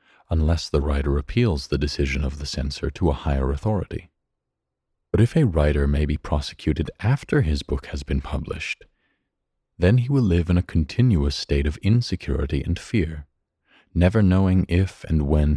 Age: 40-59